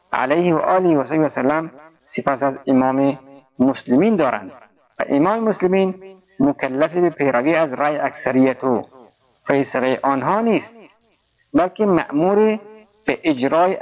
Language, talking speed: Persian, 110 wpm